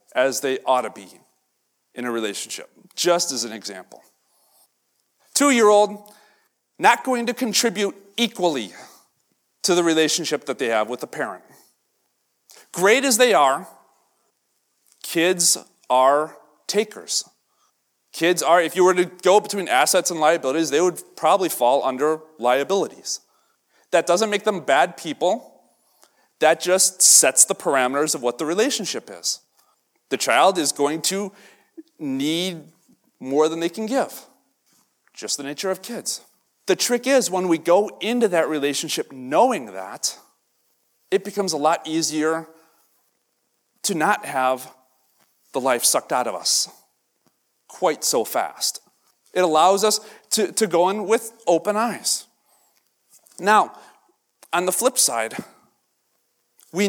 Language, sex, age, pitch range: English, male, 40-59, 145-205 Hz